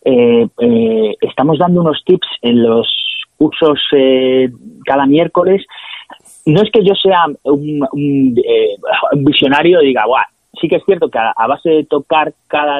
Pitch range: 140-195 Hz